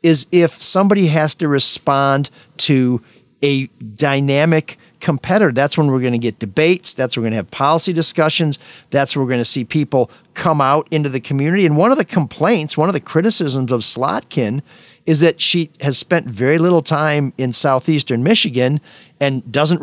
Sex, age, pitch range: male, 50-69, 130-170 Hz